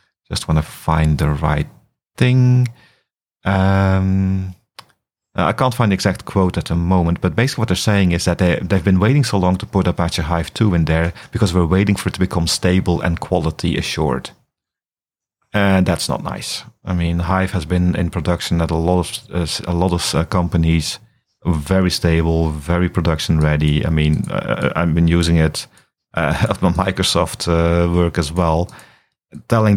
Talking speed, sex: 185 wpm, male